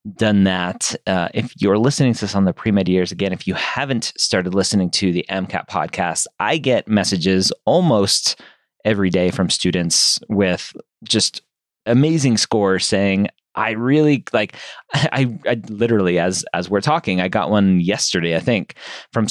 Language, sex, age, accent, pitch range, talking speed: English, male, 30-49, American, 95-125 Hz, 165 wpm